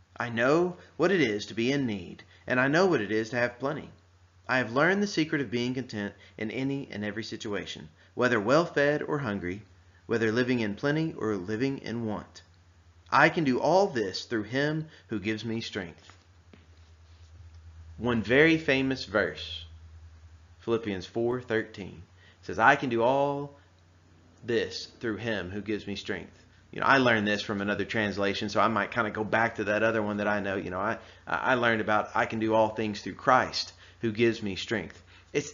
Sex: male